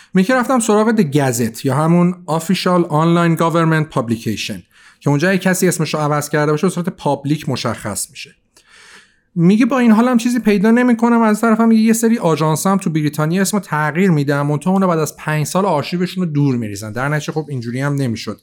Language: Persian